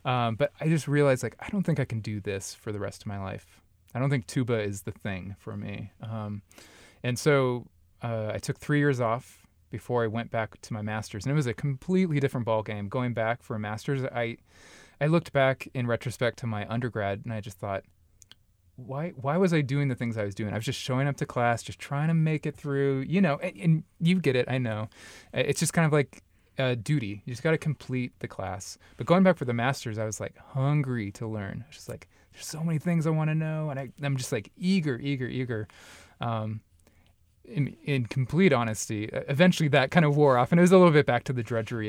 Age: 20-39